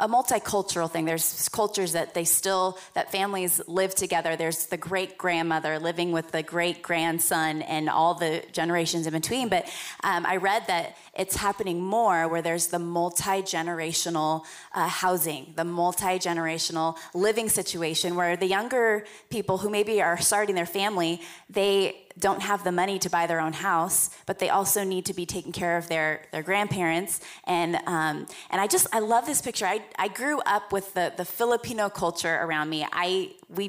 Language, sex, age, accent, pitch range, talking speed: English, female, 20-39, American, 170-200 Hz, 175 wpm